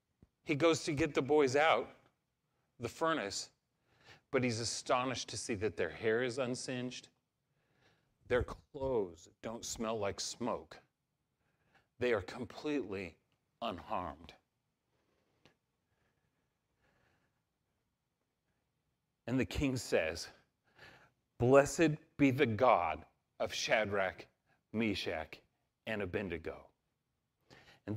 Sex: male